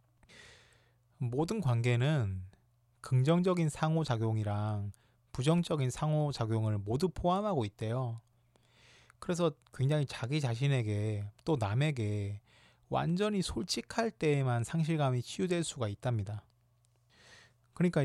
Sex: male